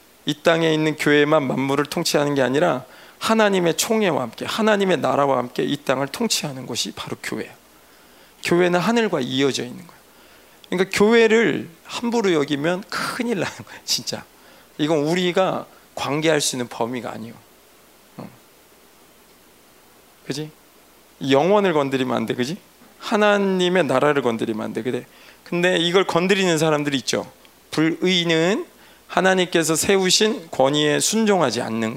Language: Korean